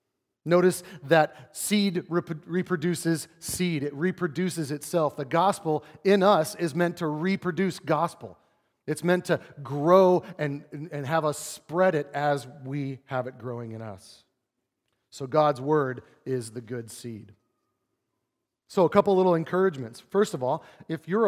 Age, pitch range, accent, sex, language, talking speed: 40-59, 135-175 Hz, American, male, English, 145 wpm